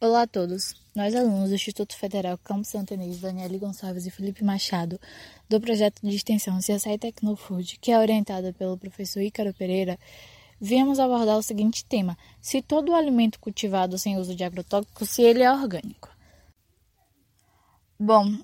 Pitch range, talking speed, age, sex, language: 195-220 Hz, 155 wpm, 10-29, female, English